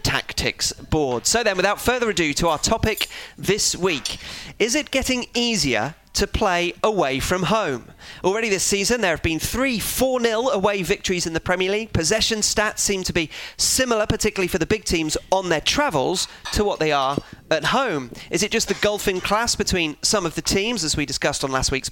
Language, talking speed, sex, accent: English, 195 wpm, male, British